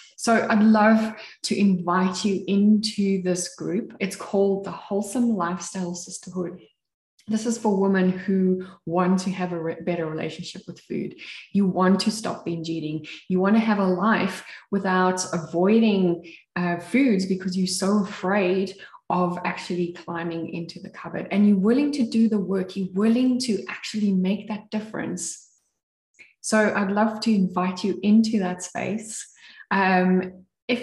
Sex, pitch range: female, 175-210 Hz